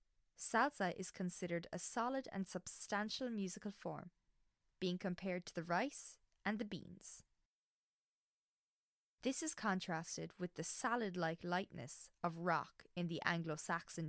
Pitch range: 170-215 Hz